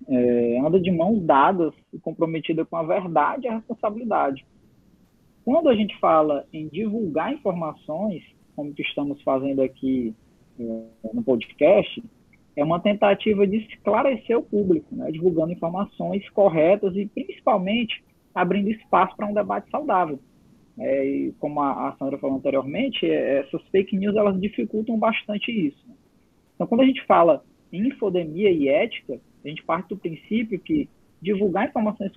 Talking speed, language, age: 145 wpm, Portuguese, 20-39